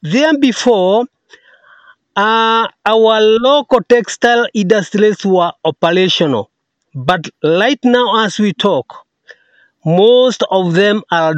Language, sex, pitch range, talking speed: English, male, 180-230 Hz, 100 wpm